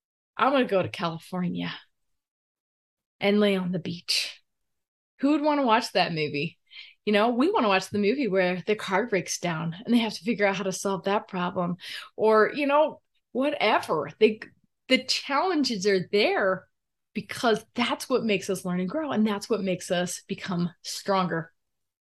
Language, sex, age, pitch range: English, female, 20-39, 185-250 Hz